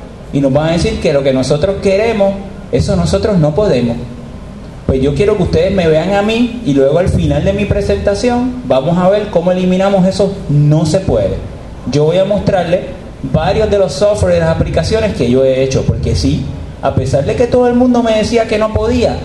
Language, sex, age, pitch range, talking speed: Spanish, male, 30-49, 125-185 Hz, 210 wpm